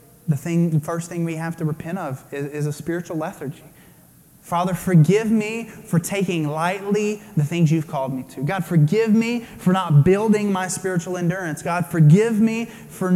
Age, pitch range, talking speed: 20-39, 155-185 Hz, 180 wpm